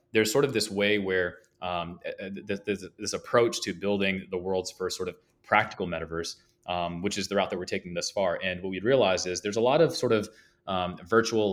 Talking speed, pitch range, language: 215 wpm, 90-105 Hz, English